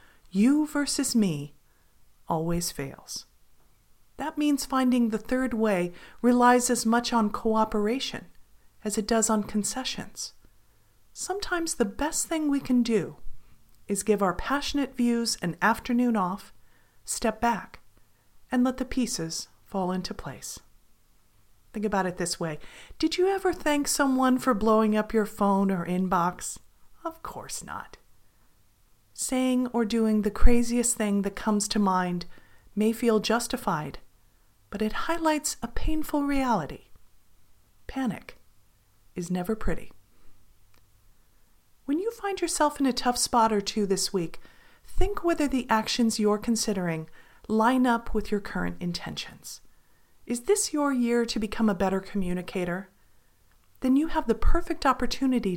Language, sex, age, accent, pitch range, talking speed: English, female, 40-59, American, 175-255 Hz, 135 wpm